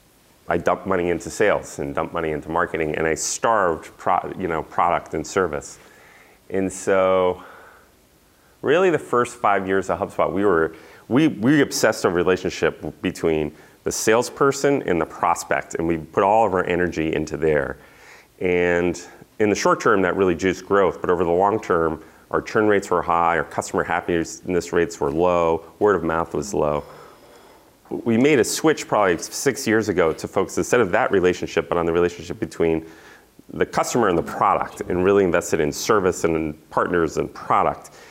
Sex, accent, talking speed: male, American, 180 wpm